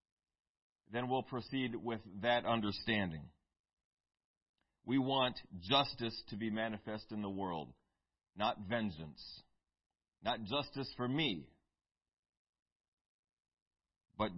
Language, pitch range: English, 105-170 Hz